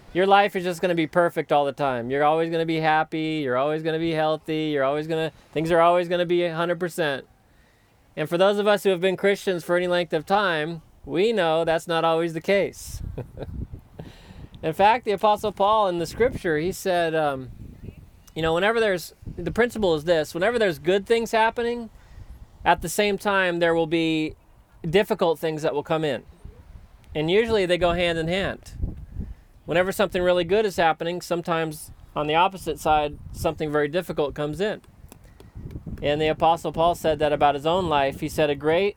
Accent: American